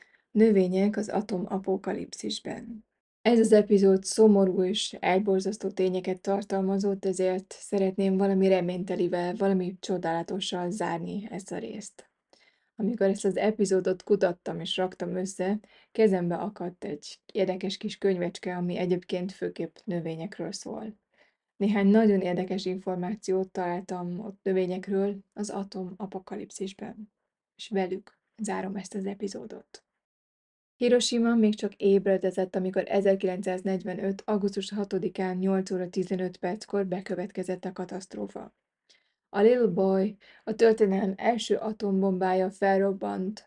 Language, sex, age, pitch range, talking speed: Hungarian, female, 20-39, 185-205 Hz, 110 wpm